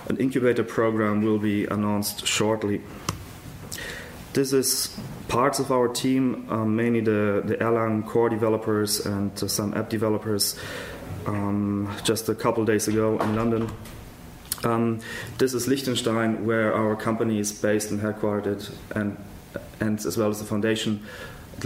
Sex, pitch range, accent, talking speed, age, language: male, 100-115 Hz, German, 145 wpm, 30-49, English